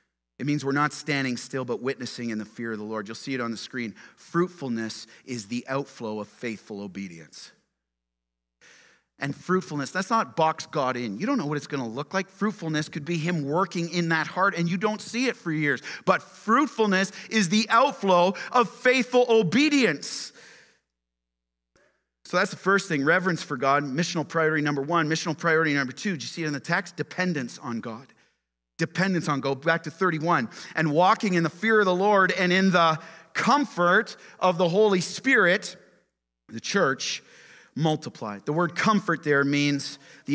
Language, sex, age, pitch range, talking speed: English, male, 40-59, 130-180 Hz, 185 wpm